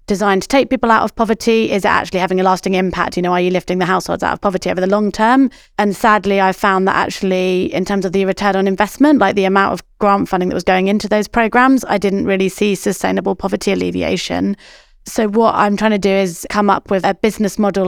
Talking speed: 245 wpm